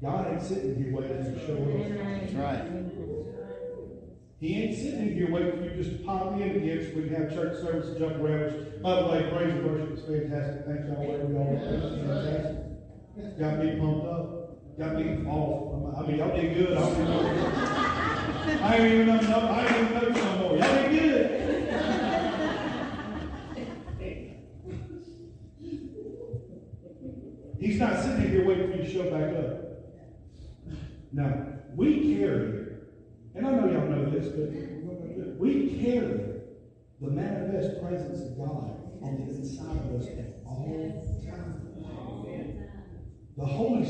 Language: English